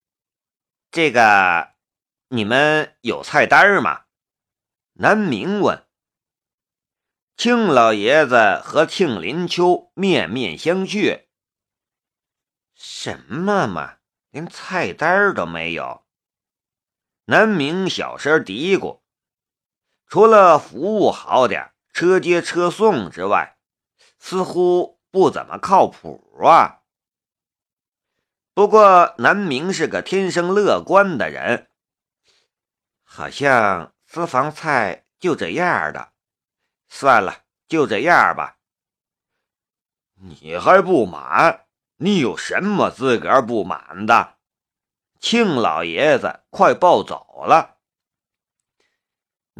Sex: male